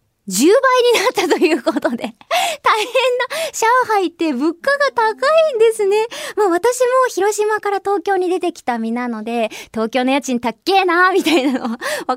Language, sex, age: Japanese, male, 20-39